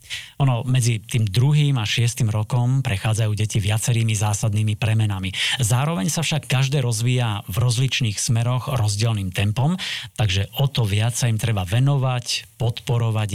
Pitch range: 105-130 Hz